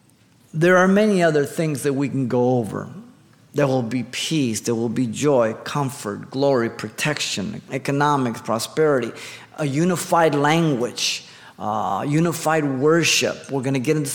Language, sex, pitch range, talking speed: English, male, 125-155 Hz, 145 wpm